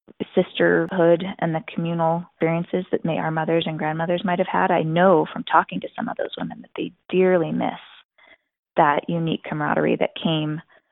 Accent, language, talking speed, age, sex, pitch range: American, English, 170 wpm, 20-39, female, 160-190 Hz